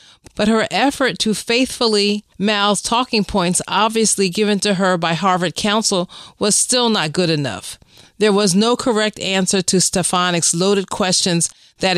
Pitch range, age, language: 175-210 Hz, 40-59, English